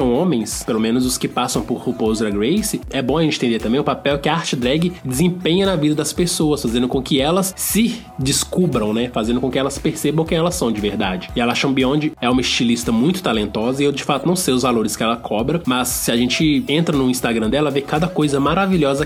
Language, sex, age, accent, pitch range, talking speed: Portuguese, male, 20-39, Brazilian, 130-175 Hz, 235 wpm